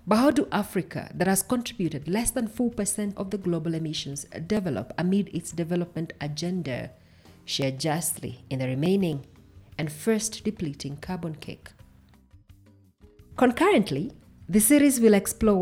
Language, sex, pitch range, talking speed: English, female, 140-200 Hz, 135 wpm